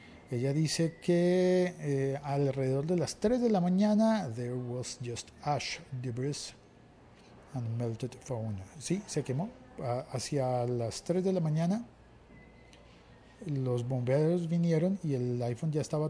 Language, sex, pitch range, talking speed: Spanish, male, 105-155 Hz, 140 wpm